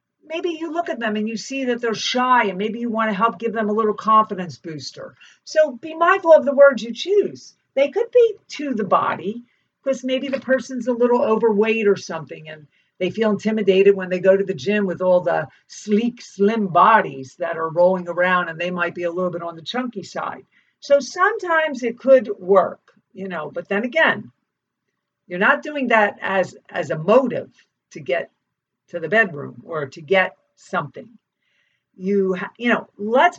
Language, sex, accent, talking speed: English, female, American, 195 wpm